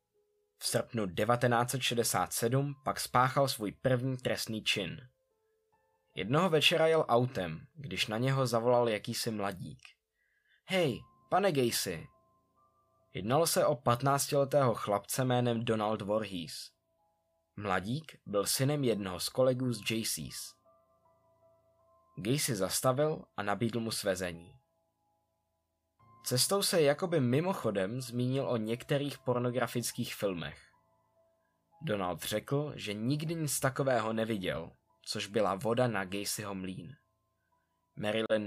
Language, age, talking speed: Czech, 20-39, 105 wpm